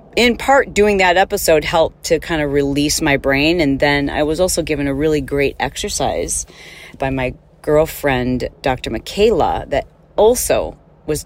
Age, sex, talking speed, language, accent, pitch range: 40-59, female, 160 wpm, English, American, 155-205 Hz